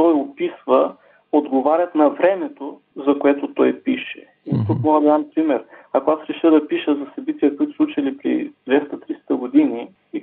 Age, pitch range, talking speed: 40-59, 135-180 Hz, 170 wpm